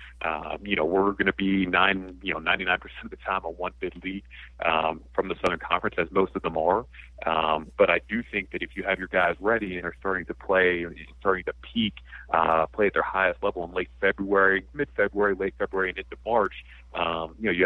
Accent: American